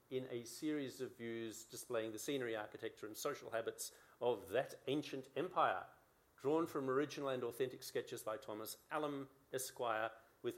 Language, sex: English, male